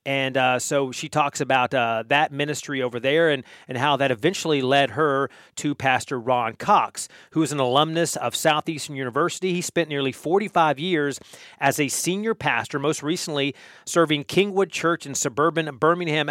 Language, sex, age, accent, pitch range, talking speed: English, male, 30-49, American, 130-160 Hz, 175 wpm